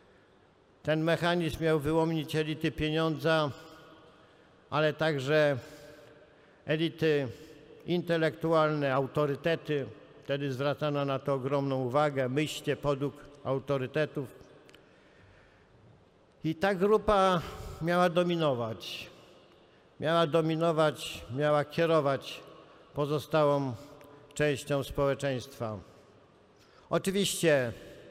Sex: male